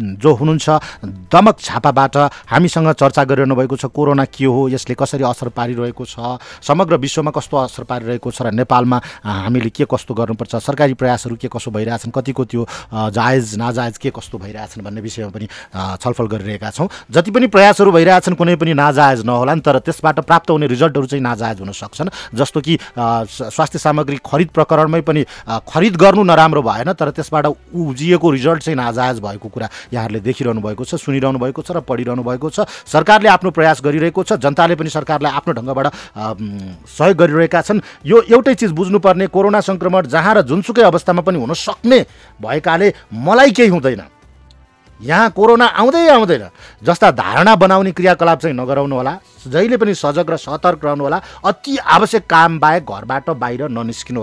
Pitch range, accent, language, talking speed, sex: 120-175 Hz, Indian, English, 115 wpm, male